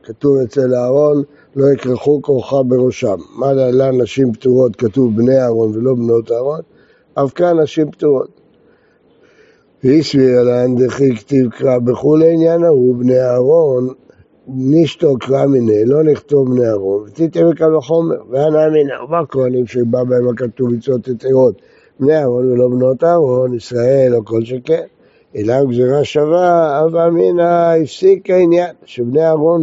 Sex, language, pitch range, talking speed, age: male, Hebrew, 125-155 Hz, 135 wpm, 60-79